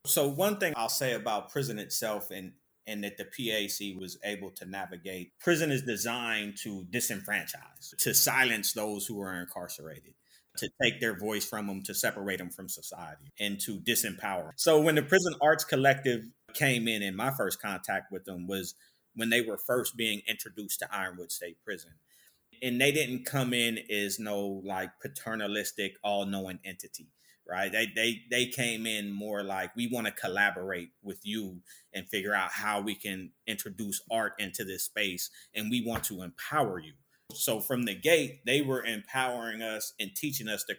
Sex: male